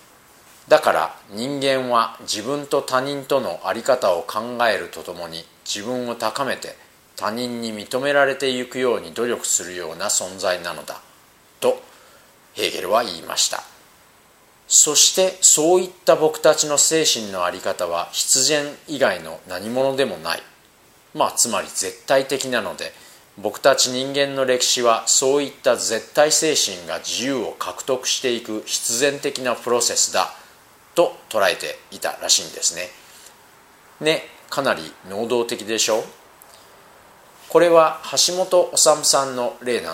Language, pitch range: Japanese, 120-150 Hz